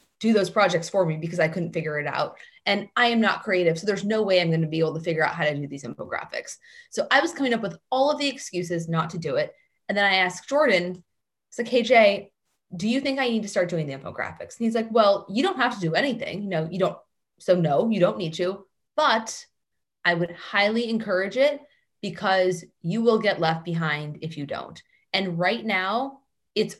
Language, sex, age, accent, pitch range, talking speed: English, female, 20-39, American, 175-235 Hz, 235 wpm